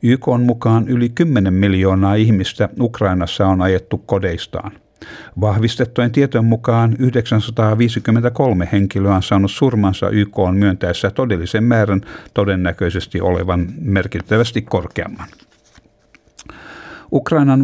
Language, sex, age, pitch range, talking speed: Finnish, male, 60-79, 95-115 Hz, 100 wpm